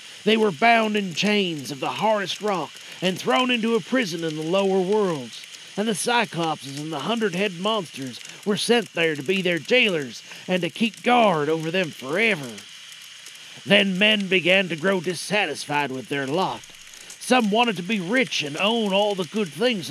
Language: English